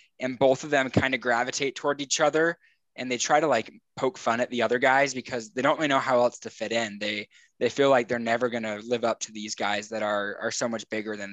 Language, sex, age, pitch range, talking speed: English, male, 10-29, 110-130 Hz, 270 wpm